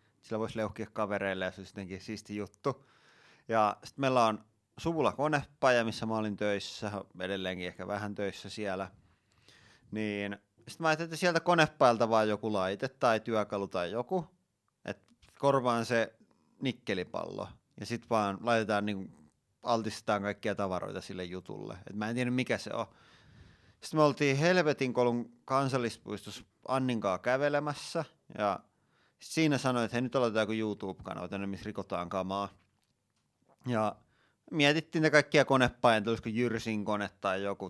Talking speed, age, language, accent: 140 wpm, 30-49, Finnish, native